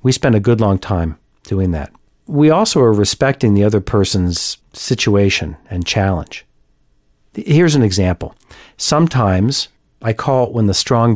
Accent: American